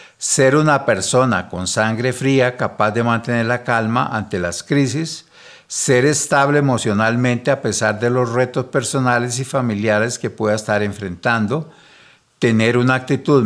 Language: Spanish